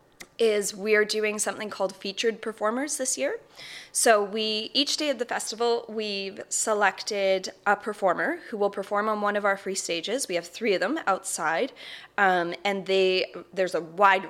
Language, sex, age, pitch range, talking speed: English, female, 20-39, 185-235 Hz, 175 wpm